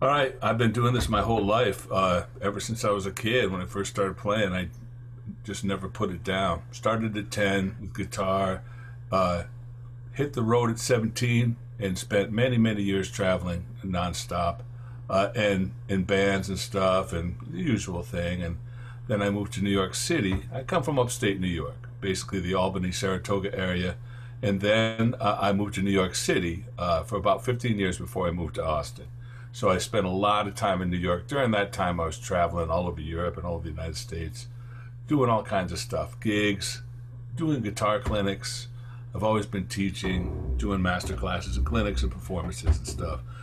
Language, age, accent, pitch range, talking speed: English, 60-79, American, 95-120 Hz, 195 wpm